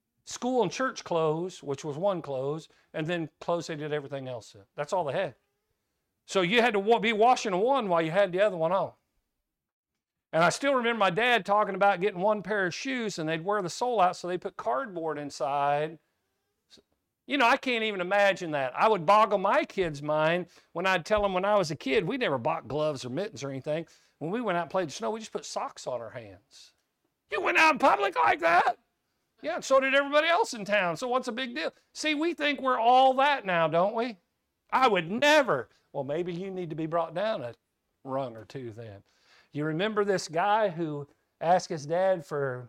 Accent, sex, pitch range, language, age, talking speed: American, male, 155-210 Hz, English, 50-69, 220 wpm